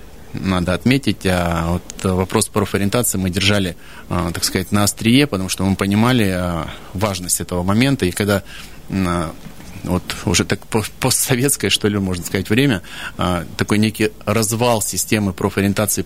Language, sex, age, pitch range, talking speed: Russian, male, 30-49, 95-115 Hz, 145 wpm